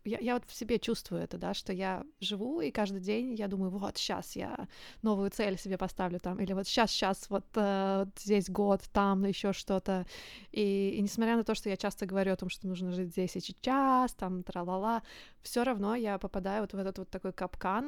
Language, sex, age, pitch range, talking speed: Russian, female, 20-39, 195-220 Hz, 220 wpm